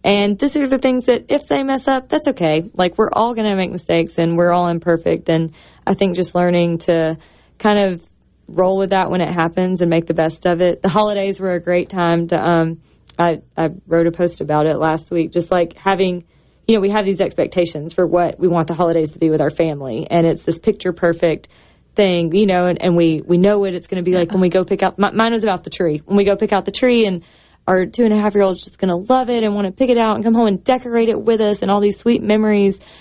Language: English